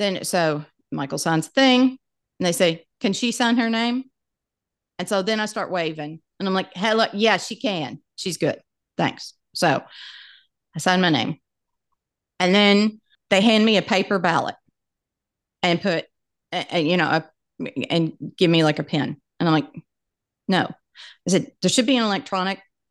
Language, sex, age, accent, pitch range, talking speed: English, female, 40-59, American, 170-230 Hz, 175 wpm